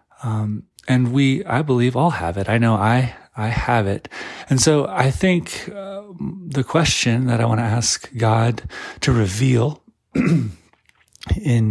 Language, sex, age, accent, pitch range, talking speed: English, male, 30-49, American, 105-125 Hz, 155 wpm